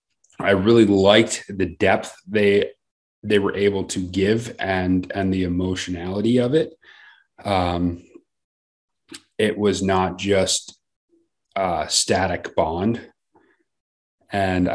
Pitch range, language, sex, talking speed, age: 90-105 Hz, English, male, 105 wpm, 30-49